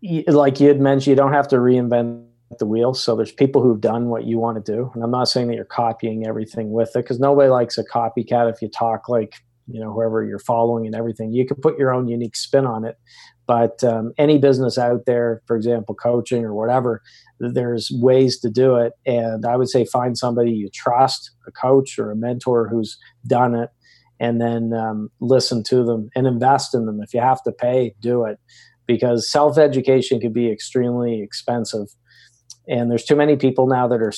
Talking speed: 210 wpm